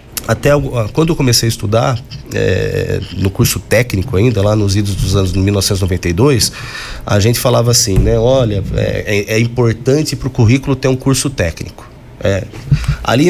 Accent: Brazilian